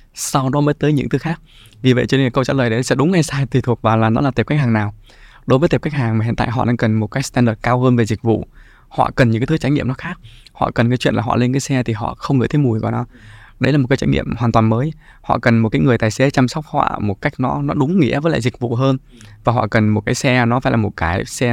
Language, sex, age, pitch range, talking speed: Vietnamese, male, 20-39, 115-140 Hz, 325 wpm